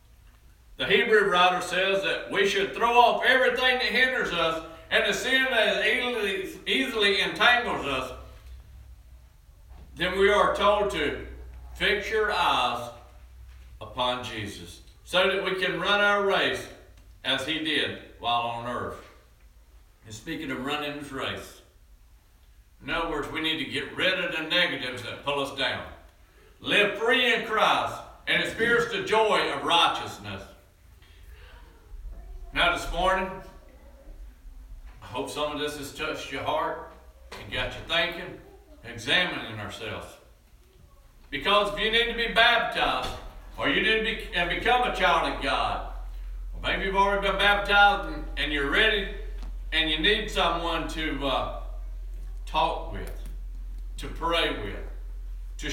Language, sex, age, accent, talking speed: English, male, 60-79, American, 140 wpm